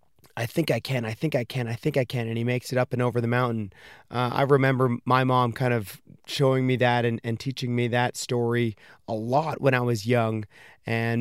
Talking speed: 235 wpm